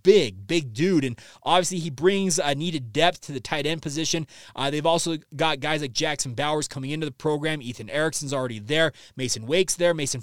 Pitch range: 130-170 Hz